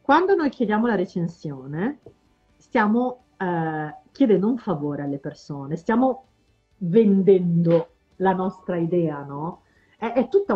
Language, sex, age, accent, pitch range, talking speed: Italian, female, 40-59, native, 165-235 Hz, 120 wpm